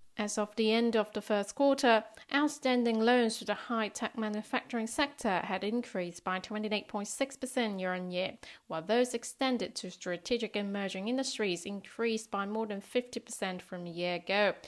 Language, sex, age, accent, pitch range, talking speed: English, female, 30-49, British, 190-235 Hz, 145 wpm